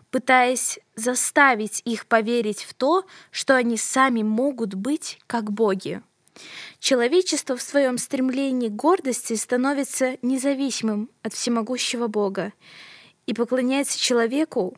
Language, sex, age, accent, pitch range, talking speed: Russian, female, 20-39, native, 225-275 Hz, 110 wpm